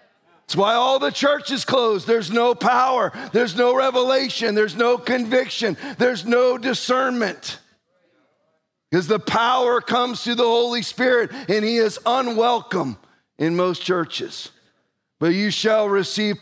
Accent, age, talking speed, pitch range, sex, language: American, 40-59, 130 wpm, 190-220 Hz, male, English